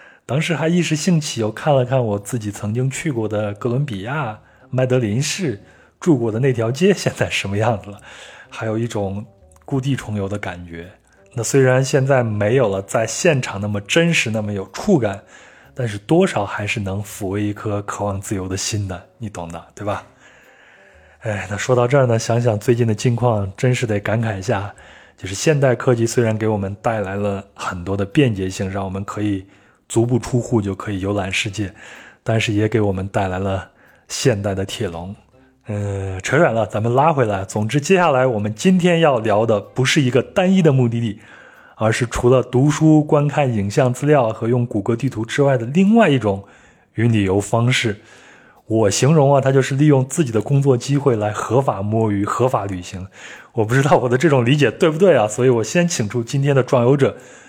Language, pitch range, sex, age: Chinese, 100-135 Hz, male, 20-39